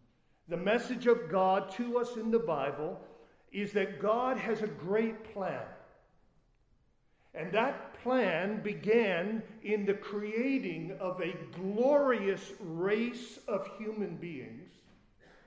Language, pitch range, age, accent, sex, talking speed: English, 145-215 Hz, 50-69, American, male, 115 wpm